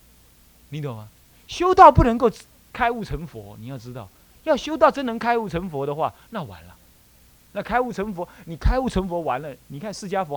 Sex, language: male, Chinese